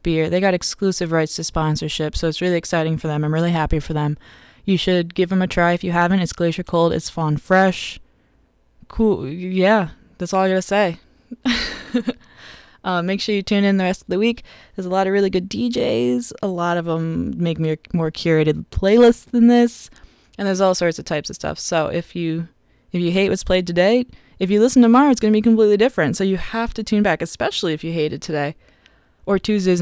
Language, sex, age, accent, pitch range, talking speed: English, female, 20-39, American, 165-210 Hz, 220 wpm